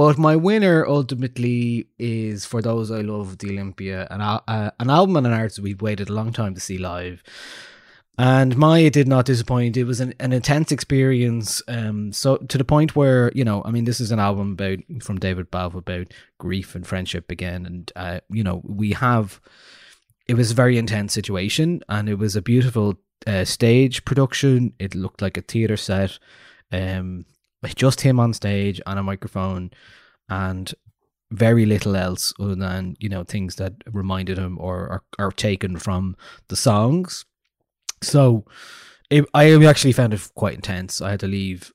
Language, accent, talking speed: English, Irish, 180 wpm